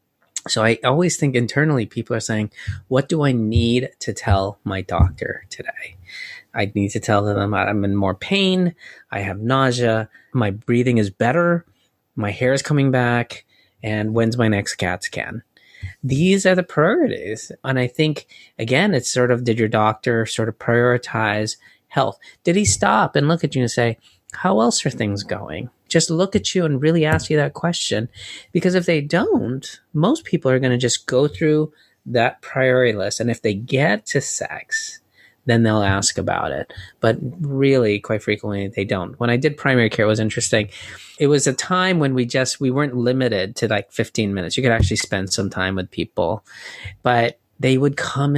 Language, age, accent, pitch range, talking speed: English, 30-49, American, 105-140 Hz, 185 wpm